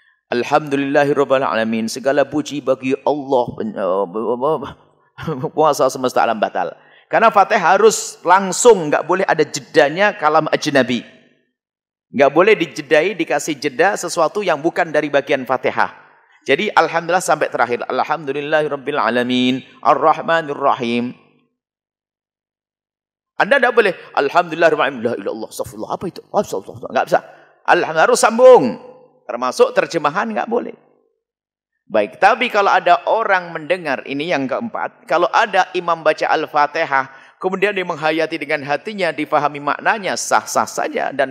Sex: male